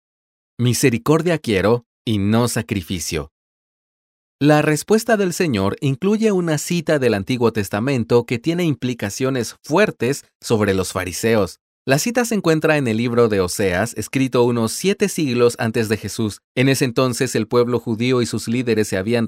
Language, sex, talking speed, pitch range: Spanish, male, 155 wpm, 110-155 Hz